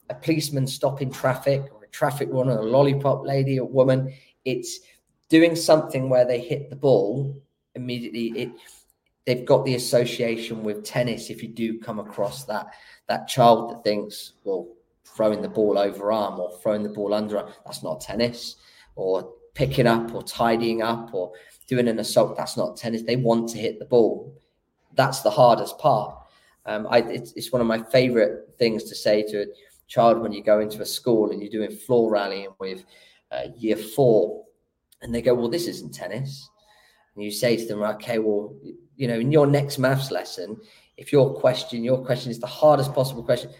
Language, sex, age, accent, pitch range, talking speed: English, male, 20-39, British, 110-135 Hz, 185 wpm